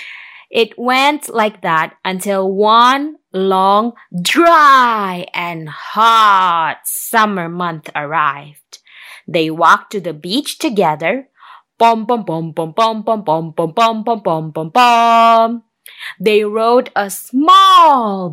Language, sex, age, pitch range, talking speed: English, female, 20-39, 185-295 Hz, 80 wpm